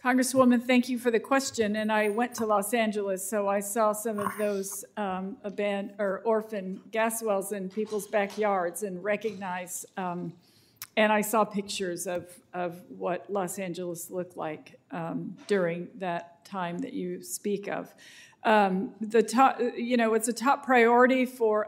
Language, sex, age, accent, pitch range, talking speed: English, female, 50-69, American, 200-230 Hz, 165 wpm